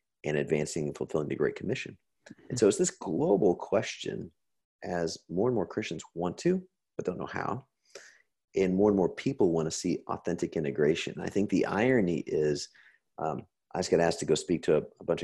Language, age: English, 40-59